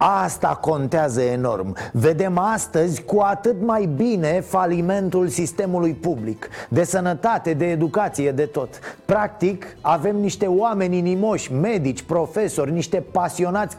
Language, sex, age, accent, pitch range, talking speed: Romanian, male, 30-49, native, 140-210 Hz, 120 wpm